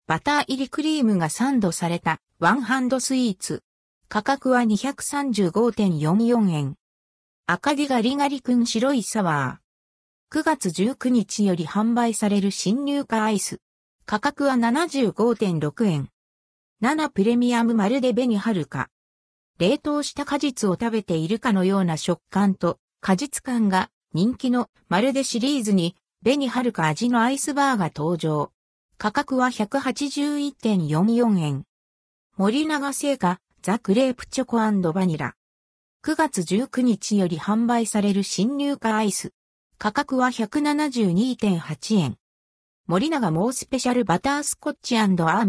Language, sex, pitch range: Japanese, female, 185-260 Hz